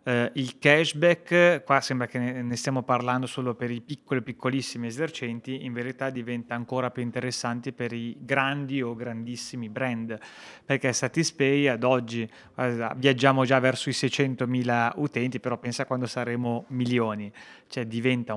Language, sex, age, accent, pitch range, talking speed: Italian, male, 30-49, native, 120-135 Hz, 145 wpm